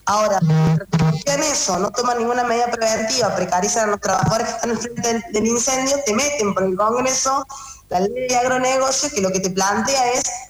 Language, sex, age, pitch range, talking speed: Spanish, female, 20-39, 185-255 Hz, 195 wpm